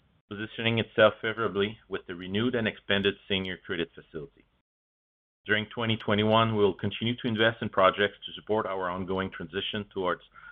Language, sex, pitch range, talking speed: English, male, 90-110 Hz, 150 wpm